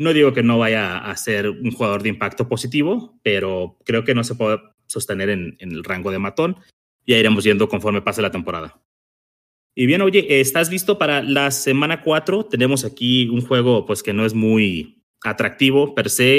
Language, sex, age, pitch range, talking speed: Spanish, male, 30-49, 105-135 Hz, 195 wpm